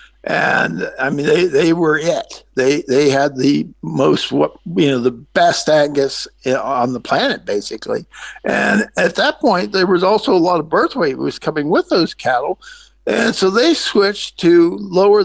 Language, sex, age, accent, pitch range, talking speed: English, male, 60-79, American, 160-220 Hz, 175 wpm